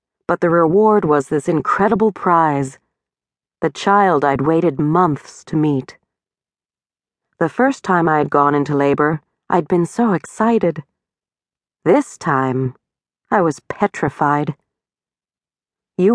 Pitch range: 155-205 Hz